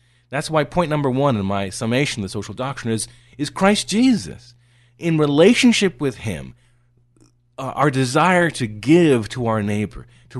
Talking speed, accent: 165 wpm, American